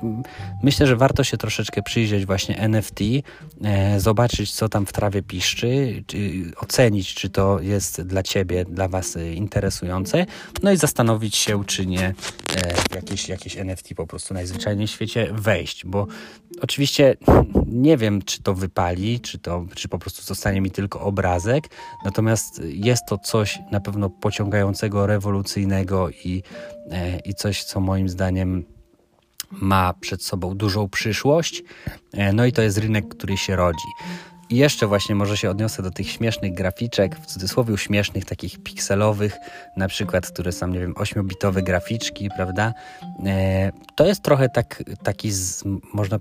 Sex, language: male, Polish